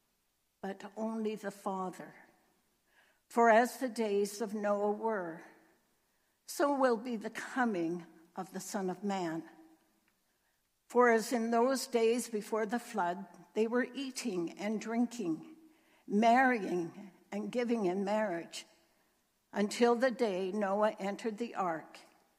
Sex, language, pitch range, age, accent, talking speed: female, English, 185-240 Hz, 60-79, American, 125 wpm